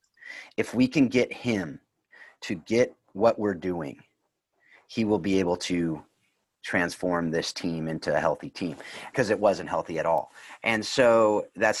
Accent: American